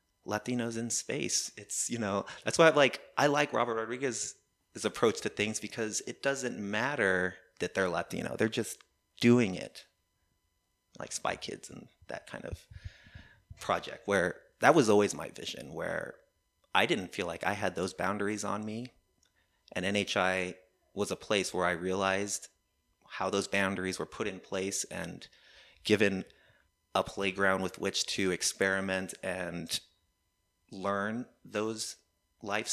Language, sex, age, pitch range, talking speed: English, male, 30-49, 90-105 Hz, 150 wpm